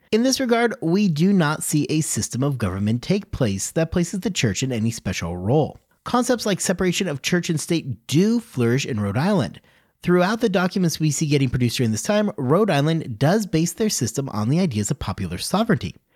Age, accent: 30-49, American